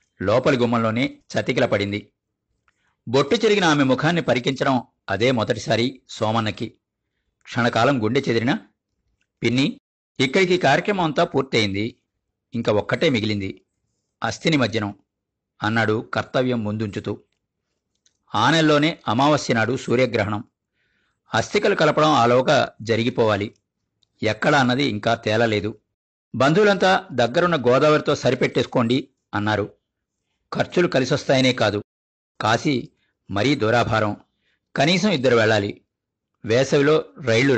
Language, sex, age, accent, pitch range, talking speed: Telugu, male, 50-69, native, 110-150 Hz, 85 wpm